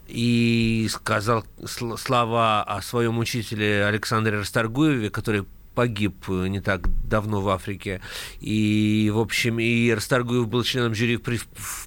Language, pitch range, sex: Russian, 105-120 Hz, male